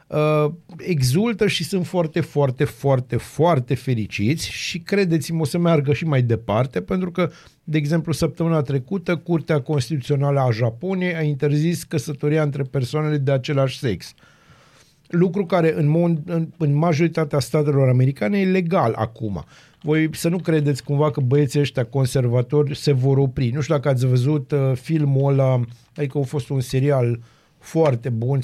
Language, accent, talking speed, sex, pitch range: Romanian, native, 155 wpm, male, 130-165 Hz